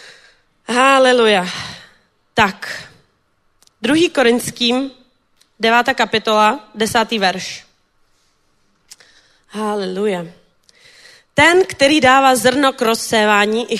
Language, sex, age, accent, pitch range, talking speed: Czech, female, 30-49, native, 205-255 Hz, 70 wpm